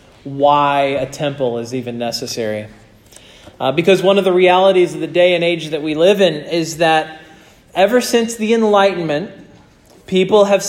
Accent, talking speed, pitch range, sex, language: American, 165 wpm, 165-195 Hz, male, English